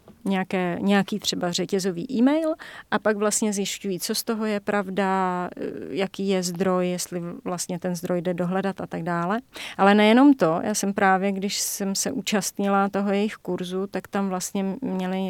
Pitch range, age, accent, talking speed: 180-210 Hz, 30-49, native, 165 wpm